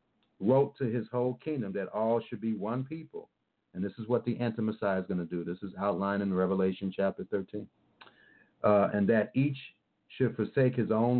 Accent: American